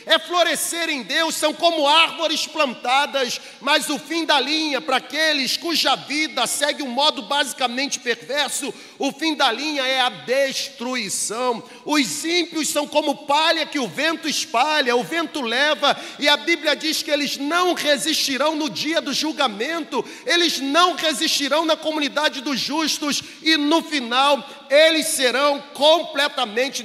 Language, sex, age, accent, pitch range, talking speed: Portuguese, male, 40-59, Brazilian, 275-320 Hz, 145 wpm